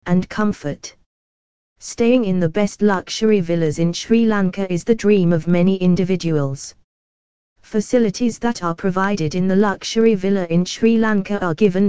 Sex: female